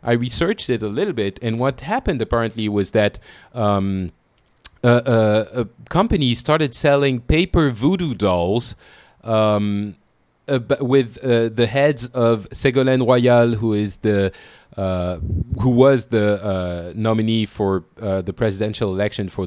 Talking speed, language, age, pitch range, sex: 140 wpm, English, 30-49, 100-130 Hz, male